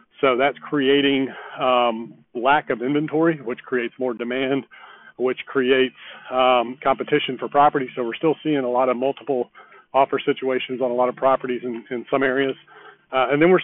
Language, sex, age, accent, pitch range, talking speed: English, male, 40-59, American, 130-150 Hz, 175 wpm